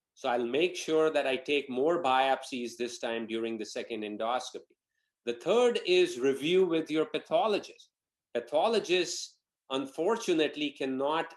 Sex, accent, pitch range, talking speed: male, Indian, 115-150 Hz, 130 wpm